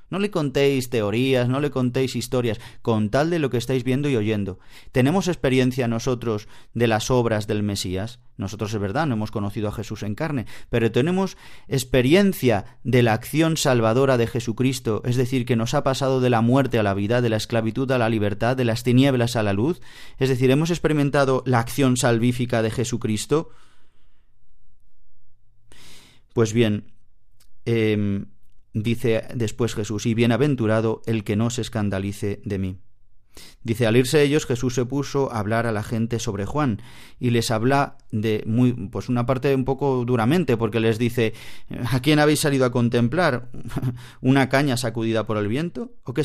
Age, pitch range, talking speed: 30-49, 110-135 Hz, 175 wpm